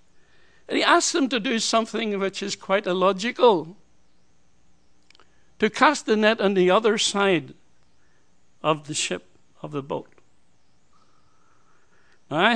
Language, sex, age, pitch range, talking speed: English, male, 60-79, 160-205 Hz, 125 wpm